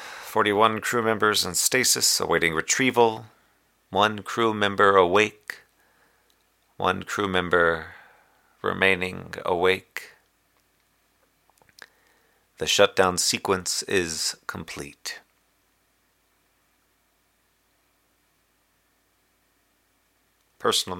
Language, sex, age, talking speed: English, male, 40-59, 65 wpm